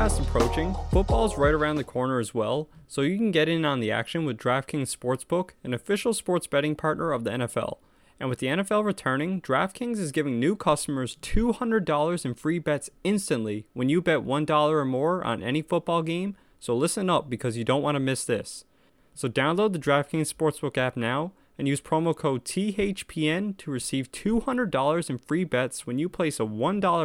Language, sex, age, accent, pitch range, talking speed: English, male, 20-39, American, 130-175 Hz, 190 wpm